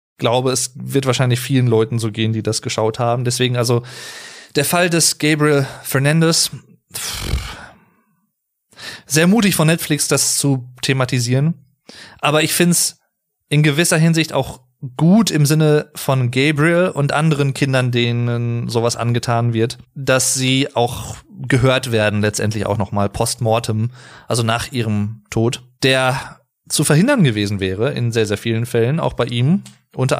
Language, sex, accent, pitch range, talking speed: German, male, German, 115-145 Hz, 150 wpm